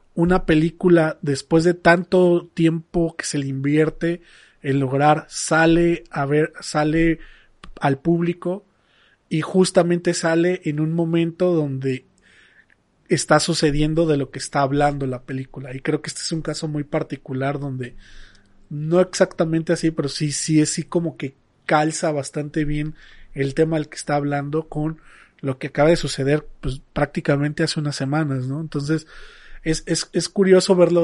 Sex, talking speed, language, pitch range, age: male, 155 wpm, Spanish, 145-175 Hz, 30-49